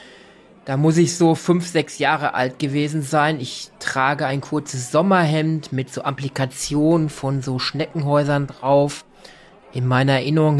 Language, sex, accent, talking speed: German, male, German, 140 wpm